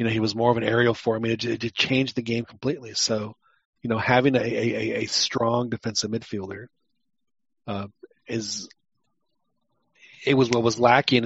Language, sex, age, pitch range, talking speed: English, male, 40-59, 110-130 Hz, 185 wpm